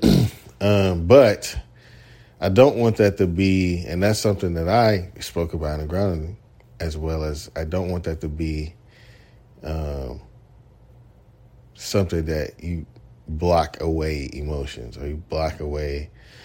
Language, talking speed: English, 140 wpm